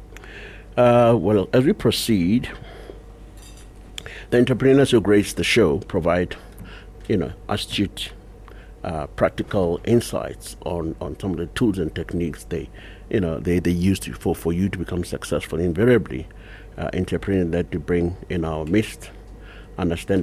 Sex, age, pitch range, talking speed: male, 60-79, 85-105 Hz, 145 wpm